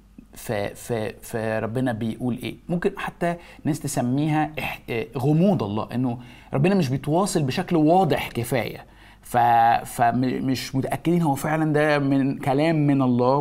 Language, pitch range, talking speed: Arabic, 115-150 Hz, 135 wpm